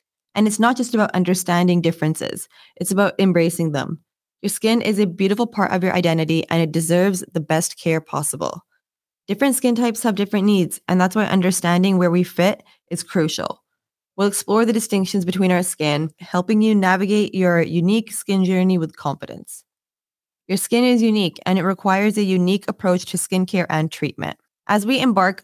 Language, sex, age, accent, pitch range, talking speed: English, female, 20-39, American, 170-205 Hz, 175 wpm